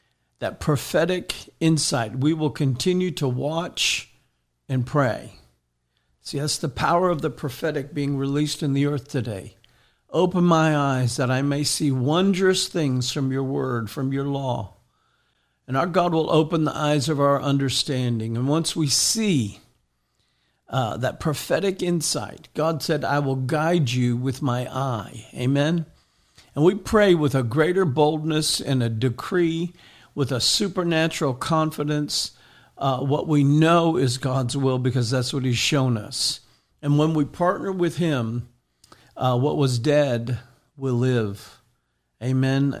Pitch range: 125-155 Hz